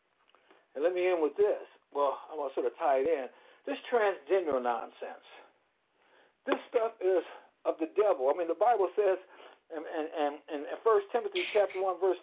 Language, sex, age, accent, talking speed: English, male, 60-79, American, 190 wpm